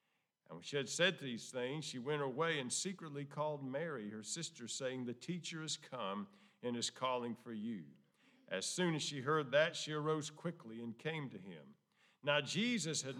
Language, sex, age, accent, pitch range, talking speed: English, male, 50-69, American, 125-160 Hz, 190 wpm